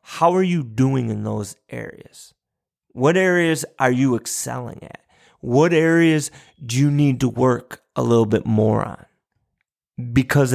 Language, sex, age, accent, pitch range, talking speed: English, male, 30-49, American, 120-165 Hz, 150 wpm